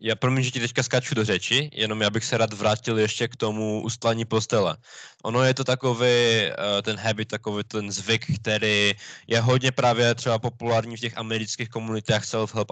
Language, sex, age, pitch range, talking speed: Czech, male, 20-39, 105-125 Hz, 185 wpm